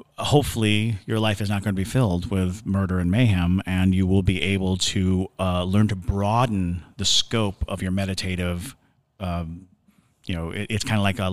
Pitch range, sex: 95-115 Hz, male